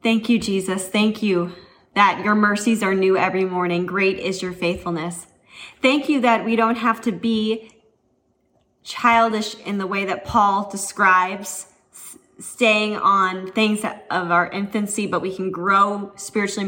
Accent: American